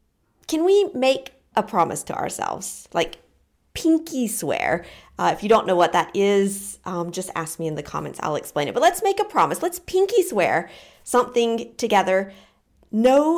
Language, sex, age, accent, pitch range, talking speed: English, female, 40-59, American, 200-275 Hz, 175 wpm